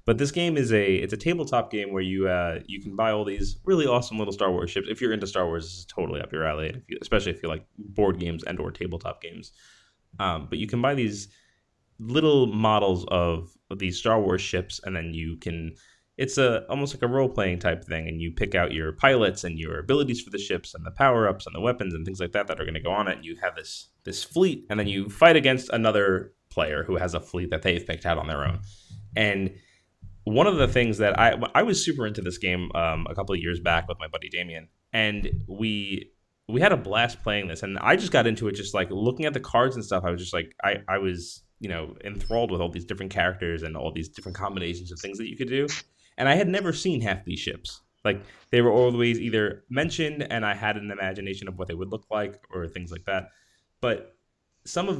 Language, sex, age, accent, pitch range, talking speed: English, male, 20-39, American, 90-120 Hz, 245 wpm